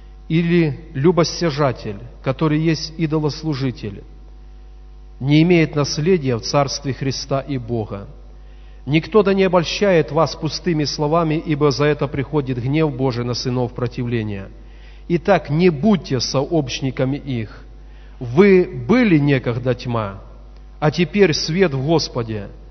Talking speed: 115 wpm